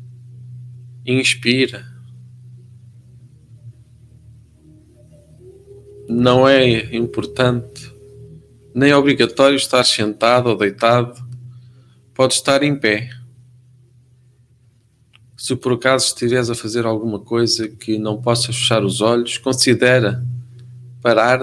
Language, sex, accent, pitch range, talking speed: Portuguese, male, Brazilian, 120-130 Hz, 85 wpm